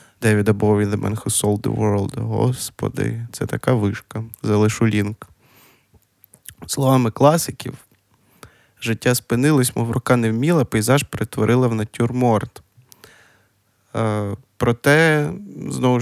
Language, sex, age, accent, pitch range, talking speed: Ukrainian, male, 20-39, native, 110-130 Hz, 105 wpm